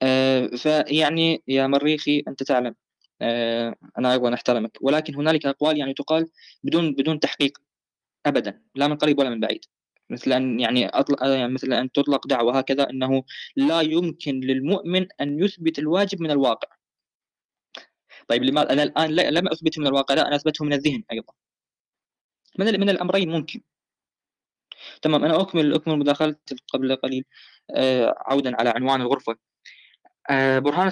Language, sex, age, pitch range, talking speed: Arabic, female, 20-39, 130-160 Hz, 145 wpm